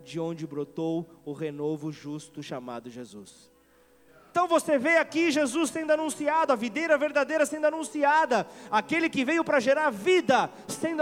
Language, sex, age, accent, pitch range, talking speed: Portuguese, male, 30-49, Brazilian, 220-280 Hz, 145 wpm